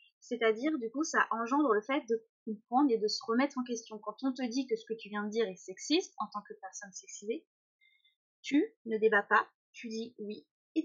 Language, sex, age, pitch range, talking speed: French, female, 20-39, 215-270 Hz, 225 wpm